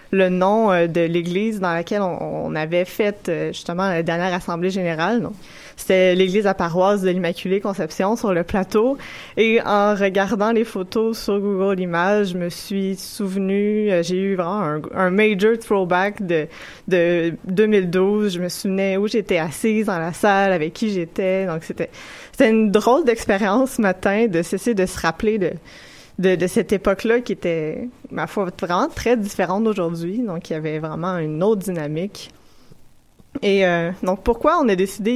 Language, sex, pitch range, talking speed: French, female, 180-215 Hz, 175 wpm